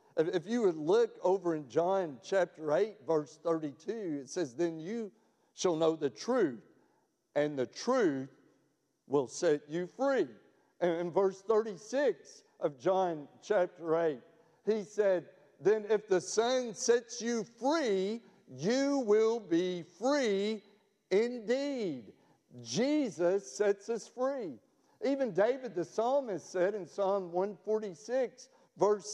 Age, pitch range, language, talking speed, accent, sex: 50-69, 175-225 Hz, English, 125 wpm, American, male